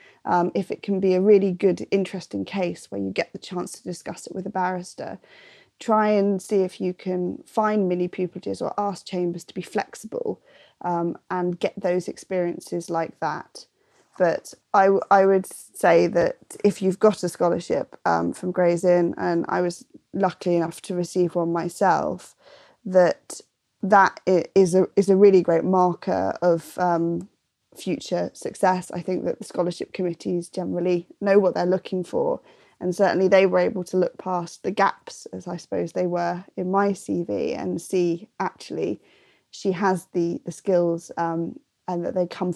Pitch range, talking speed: 175-190 Hz, 175 wpm